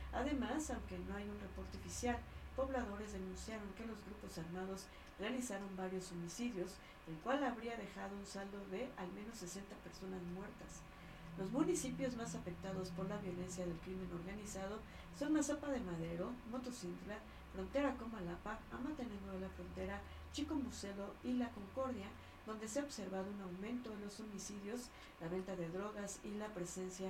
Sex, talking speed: female, 155 wpm